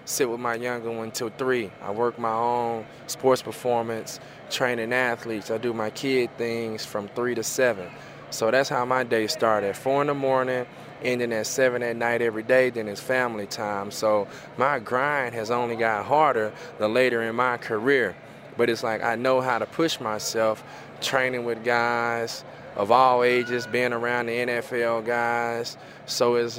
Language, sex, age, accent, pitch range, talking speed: English, male, 20-39, American, 115-130 Hz, 180 wpm